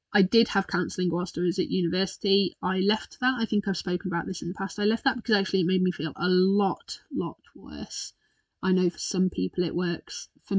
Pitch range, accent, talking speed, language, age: 180-220 Hz, British, 240 wpm, English, 20-39